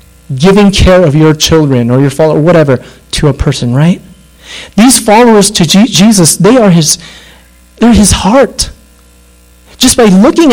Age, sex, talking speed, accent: 30-49, male, 155 wpm, American